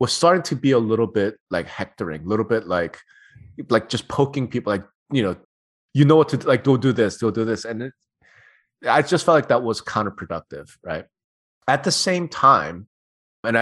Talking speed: 205 wpm